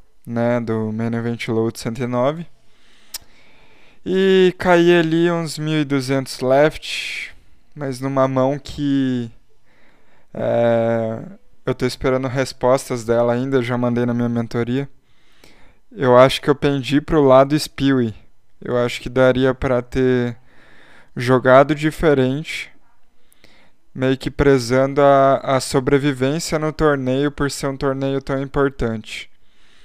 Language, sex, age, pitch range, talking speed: Portuguese, male, 20-39, 120-140 Hz, 120 wpm